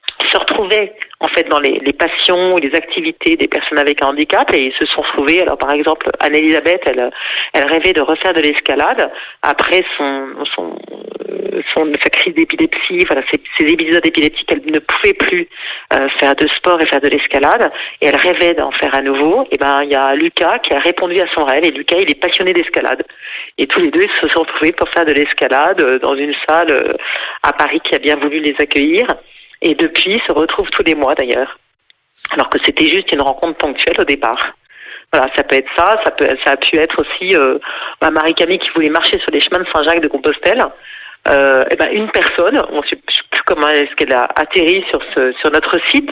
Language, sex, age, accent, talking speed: French, female, 40-59, French, 220 wpm